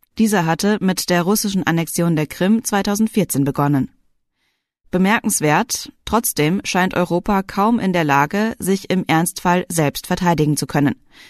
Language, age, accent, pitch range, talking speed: German, 30-49, German, 160-200 Hz, 135 wpm